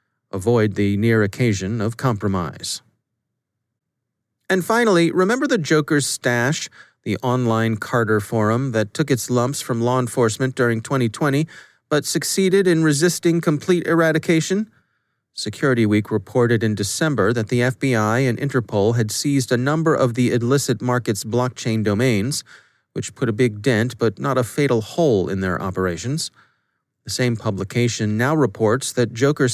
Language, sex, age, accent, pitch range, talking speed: English, male, 30-49, American, 115-145 Hz, 145 wpm